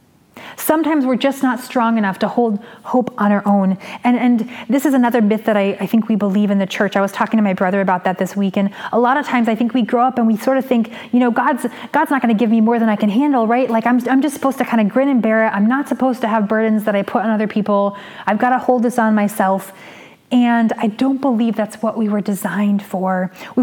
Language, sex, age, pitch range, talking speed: English, female, 20-39, 210-250 Hz, 275 wpm